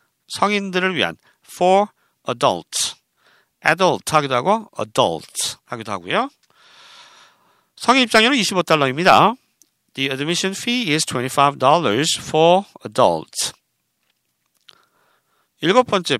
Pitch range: 135-190 Hz